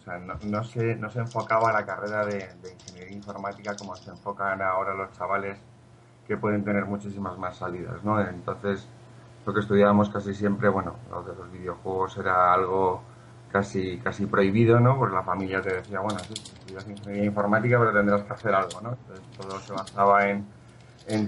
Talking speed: 190 wpm